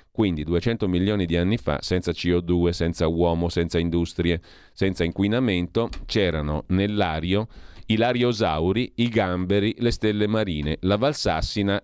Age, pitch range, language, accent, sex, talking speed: 40-59, 85-115 Hz, Italian, native, male, 125 wpm